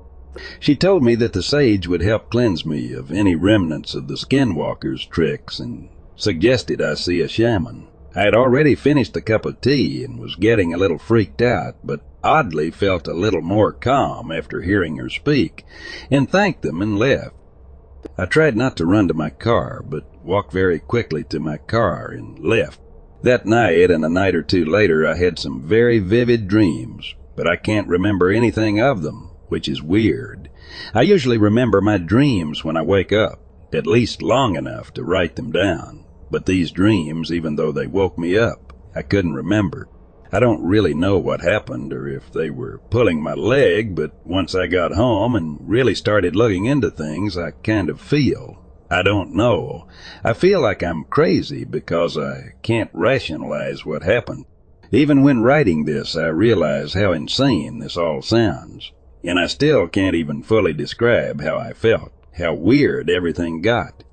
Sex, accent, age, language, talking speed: male, American, 60-79, English, 180 wpm